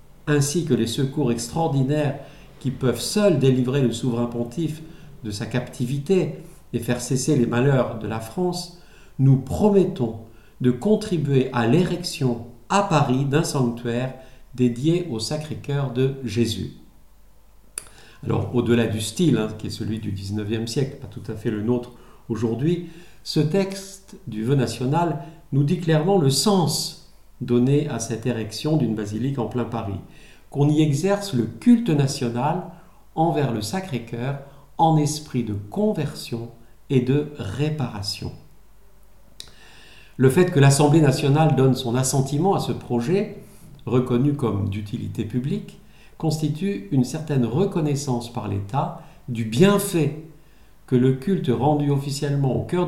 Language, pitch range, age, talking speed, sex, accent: French, 120-160 Hz, 50-69, 135 wpm, male, French